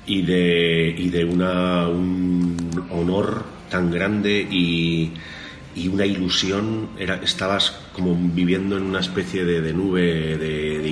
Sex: male